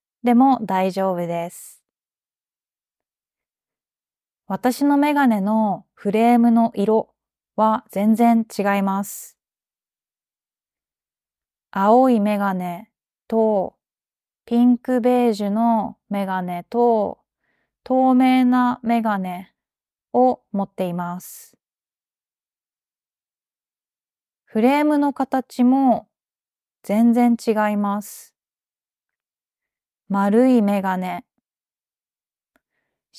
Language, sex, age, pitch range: Japanese, female, 20-39, 200-240 Hz